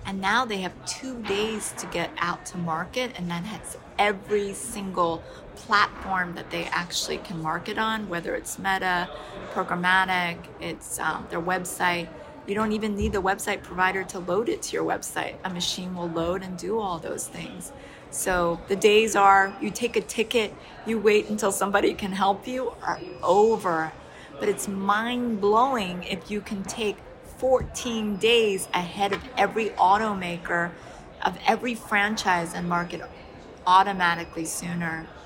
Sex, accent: female, American